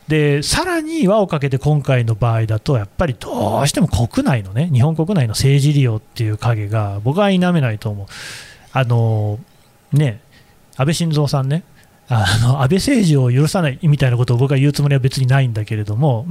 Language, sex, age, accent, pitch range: Japanese, male, 30-49, native, 120-150 Hz